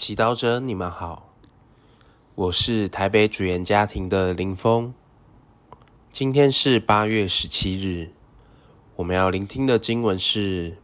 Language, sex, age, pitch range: Chinese, male, 20-39, 95-120 Hz